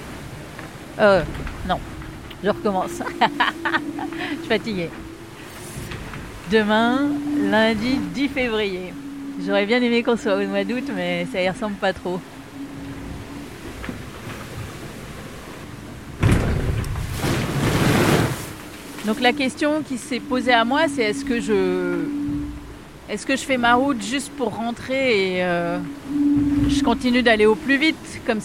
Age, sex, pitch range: 40-59, female, 205-275 Hz